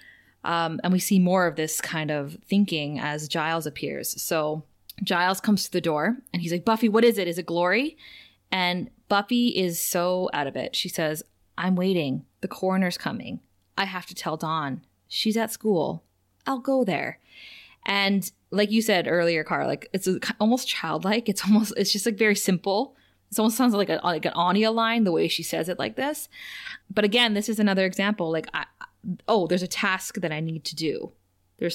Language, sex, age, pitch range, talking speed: English, female, 20-39, 165-220 Hz, 200 wpm